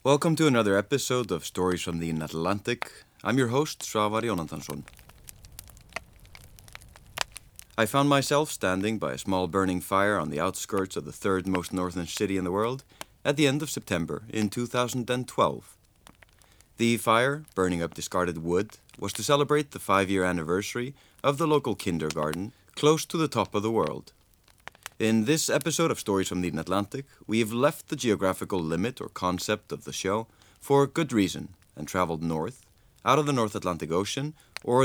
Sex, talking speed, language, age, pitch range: male, 165 wpm, English, 30-49, 90-130 Hz